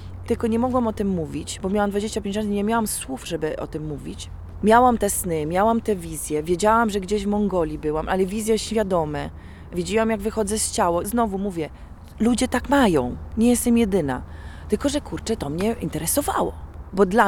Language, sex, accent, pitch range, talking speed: Polish, female, native, 165-225 Hz, 190 wpm